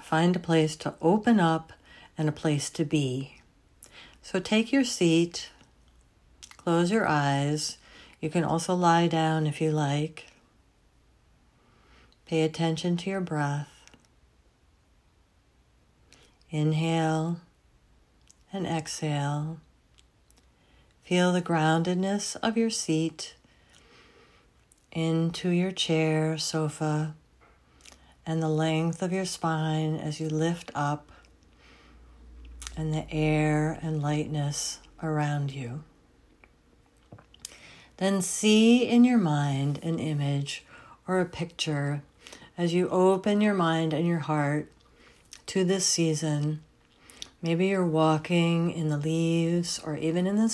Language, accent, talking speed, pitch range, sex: English, American, 110 wpm, 145-170 Hz, female